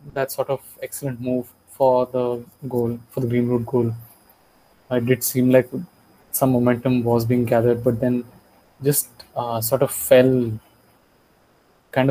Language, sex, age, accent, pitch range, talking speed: English, male, 20-39, Indian, 120-135 Hz, 145 wpm